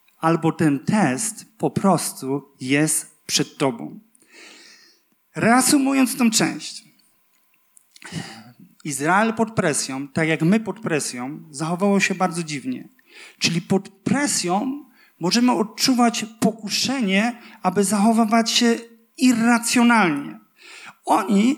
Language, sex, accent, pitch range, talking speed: Polish, male, native, 215-310 Hz, 95 wpm